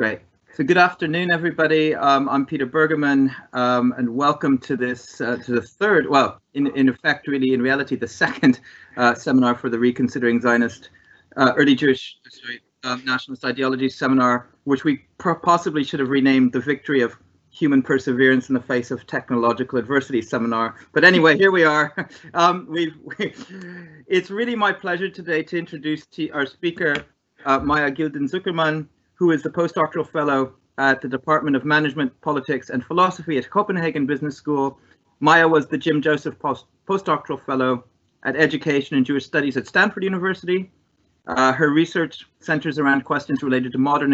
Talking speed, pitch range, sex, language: 165 wpm, 130-160 Hz, male, English